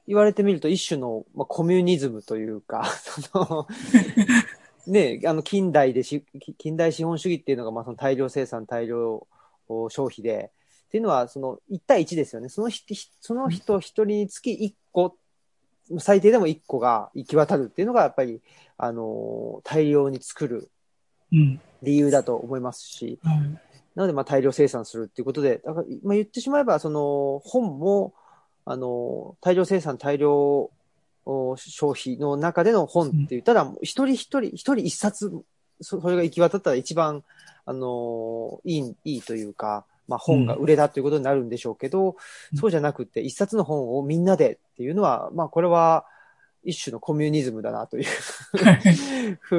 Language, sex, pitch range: Japanese, male, 135-200 Hz